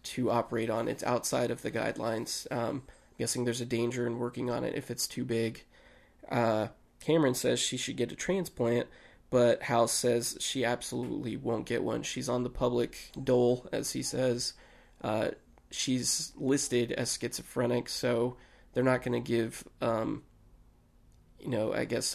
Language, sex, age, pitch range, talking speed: English, male, 20-39, 120-125 Hz, 165 wpm